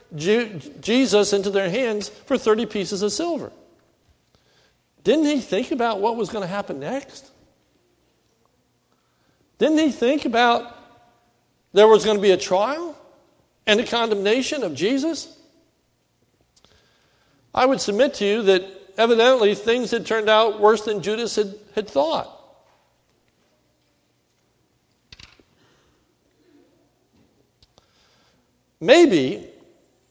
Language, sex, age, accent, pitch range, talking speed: English, male, 60-79, American, 190-245 Hz, 105 wpm